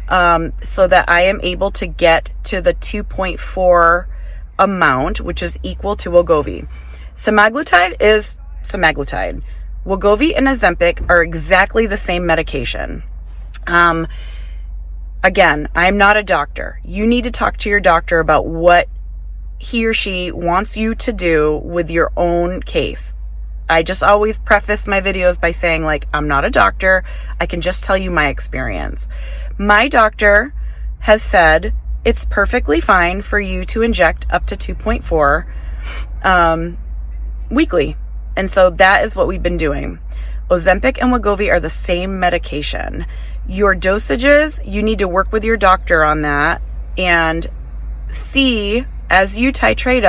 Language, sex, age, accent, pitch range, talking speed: English, female, 30-49, American, 145-200 Hz, 145 wpm